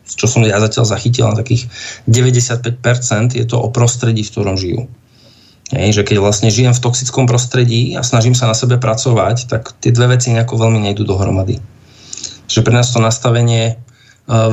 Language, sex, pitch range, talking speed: Slovak, male, 110-125 Hz, 165 wpm